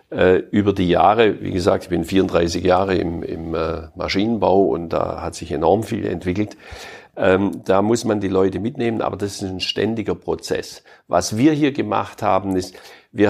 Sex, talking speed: male, 170 wpm